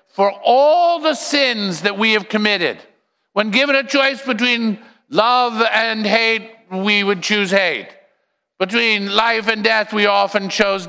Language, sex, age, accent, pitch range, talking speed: English, male, 50-69, American, 195-230 Hz, 150 wpm